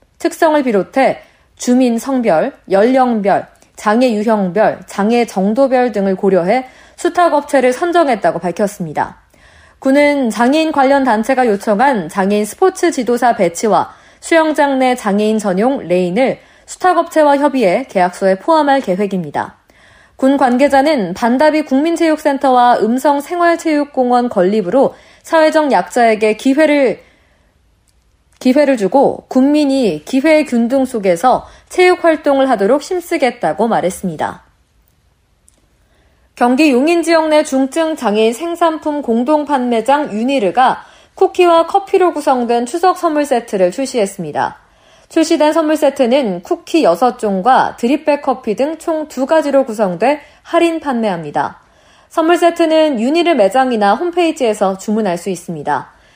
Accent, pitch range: native, 220-310 Hz